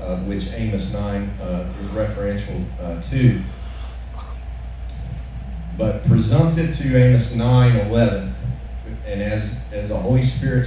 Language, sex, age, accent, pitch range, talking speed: English, male, 40-59, American, 95-120 Hz, 105 wpm